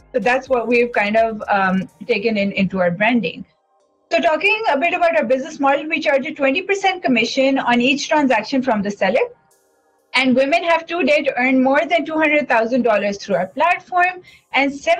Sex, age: female, 30-49